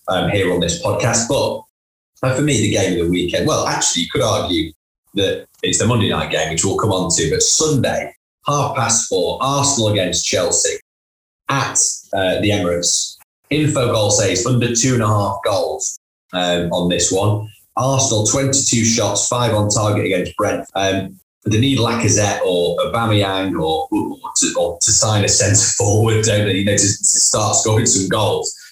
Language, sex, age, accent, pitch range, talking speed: English, male, 20-39, British, 100-130 Hz, 180 wpm